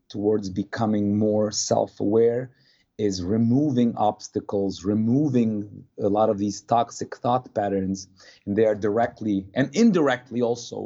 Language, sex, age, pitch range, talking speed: English, male, 30-49, 105-135 Hz, 120 wpm